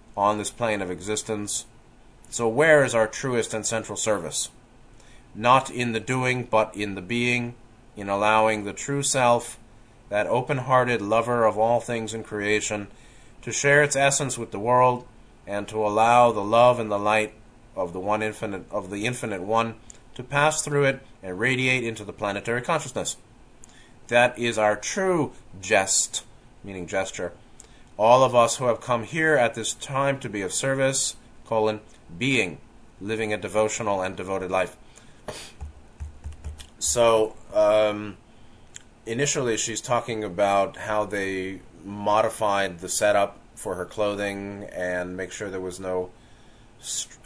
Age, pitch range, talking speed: 30-49, 100-120 Hz, 150 wpm